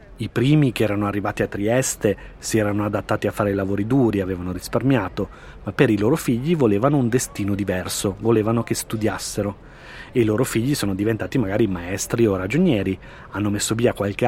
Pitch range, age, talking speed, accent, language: 100-125 Hz, 30-49, 175 wpm, native, Italian